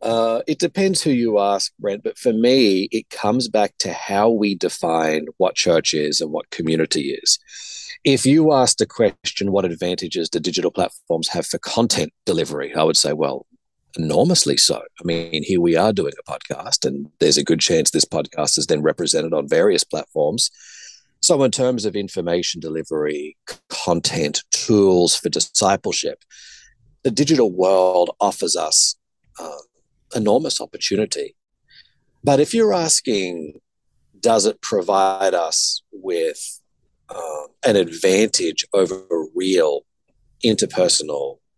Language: English